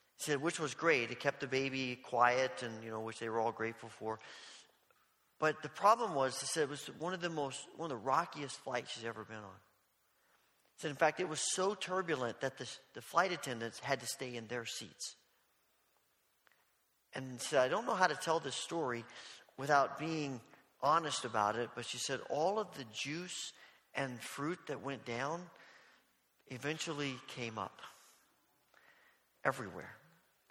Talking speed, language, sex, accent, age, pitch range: 175 wpm, English, male, American, 40-59, 130-175 Hz